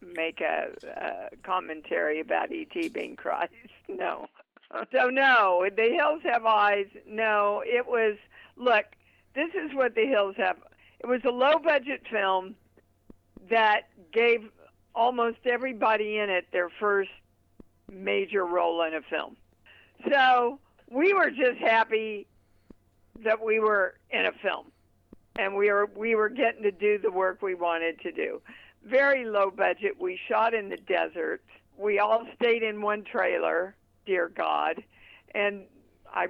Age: 50-69